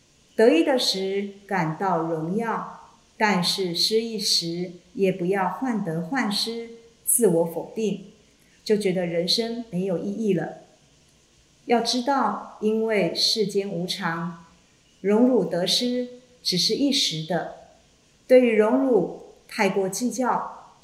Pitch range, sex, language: 180-225 Hz, female, Chinese